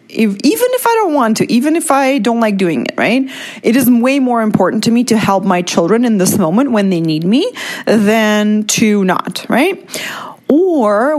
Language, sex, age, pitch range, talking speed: English, female, 30-49, 185-255 Hz, 205 wpm